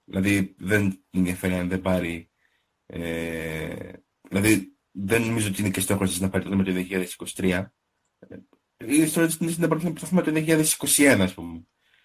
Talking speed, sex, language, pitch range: 145 wpm, male, Greek, 95-145 Hz